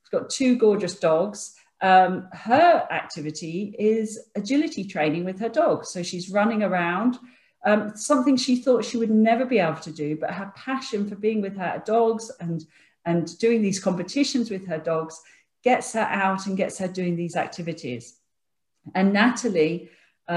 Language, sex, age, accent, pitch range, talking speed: English, female, 40-59, British, 170-235 Hz, 160 wpm